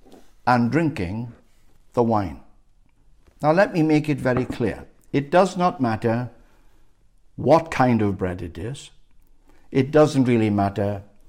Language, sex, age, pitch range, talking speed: English, male, 60-79, 105-135 Hz, 135 wpm